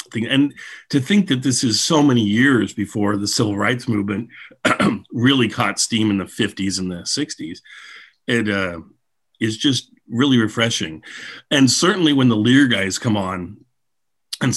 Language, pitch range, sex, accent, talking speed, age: English, 100-125 Hz, male, American, 155 wpm, 50-69